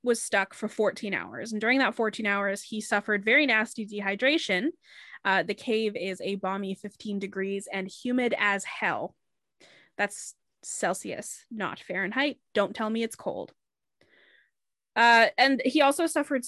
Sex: female